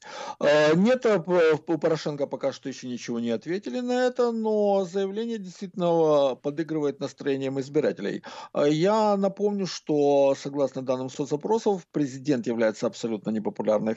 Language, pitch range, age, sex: Russian, 115-175 Hz, 50-69, male